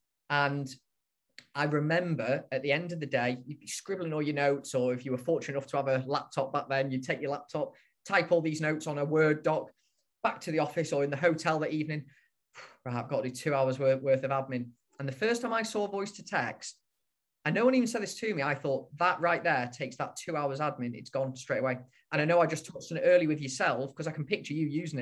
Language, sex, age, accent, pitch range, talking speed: English, male, 20-39, British, 130-170 Hz, 255 wpm